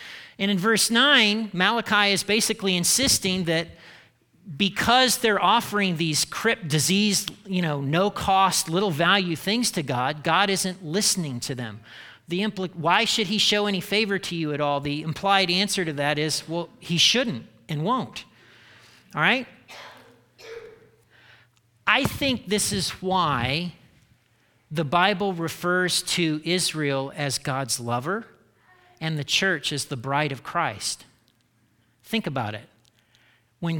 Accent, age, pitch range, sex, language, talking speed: American, 40-59, 150-210 Hz, male, English, 135 wpm